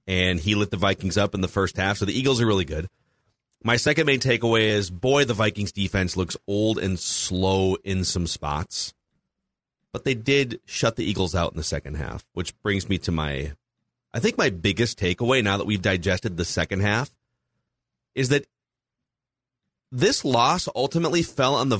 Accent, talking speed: American, 185 wpm